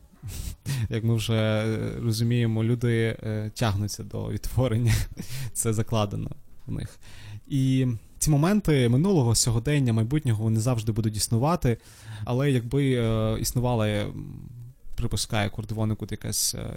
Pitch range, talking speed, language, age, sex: 105-120 Hz, 100 wpm, Ukrainian, 20-39, male